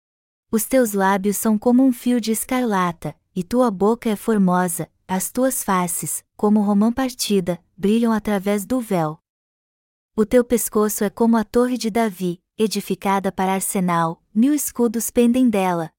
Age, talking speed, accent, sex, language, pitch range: 20-39, 155 wpm, Brazilian, female, Portuguese, 190-230 Hz